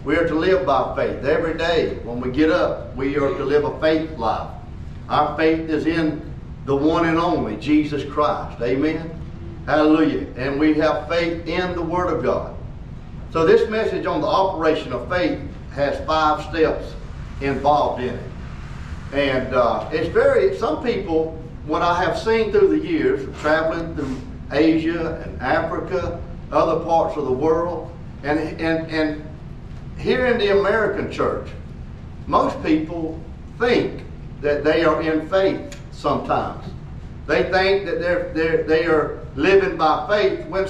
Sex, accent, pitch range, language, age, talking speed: male, American, 150-190 Hz, English, 50-69, 150 wpm